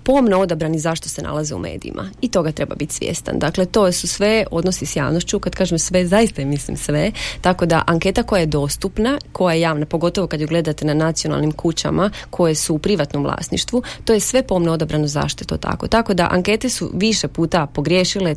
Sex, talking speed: female, 205 wpm